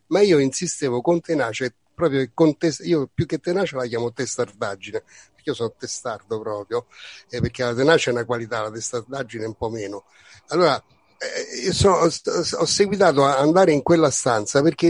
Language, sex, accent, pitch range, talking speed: Italian, male, native, 125-160 Hz, 185 wpm